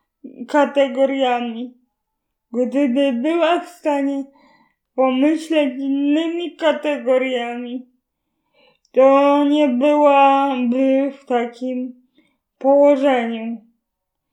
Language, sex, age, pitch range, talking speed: Polish, female, 20-39, 260-290 Hz, 60 wpm